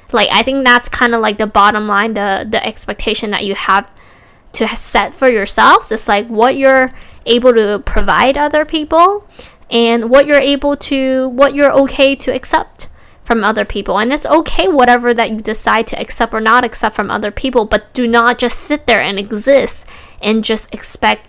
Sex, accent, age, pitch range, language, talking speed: female, American, 10-29, 210-250 Hz, English, 190 wpm